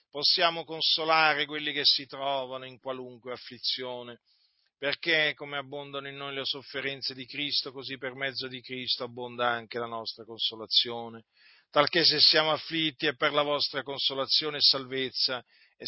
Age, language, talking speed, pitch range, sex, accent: 40-59, Italian, 150 wpm, 130-155 Hz, male, native